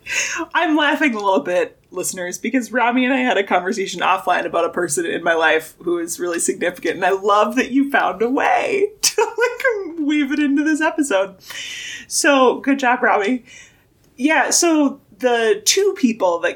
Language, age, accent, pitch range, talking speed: English, 20-39, American, 180-290 Hz, 180 wpm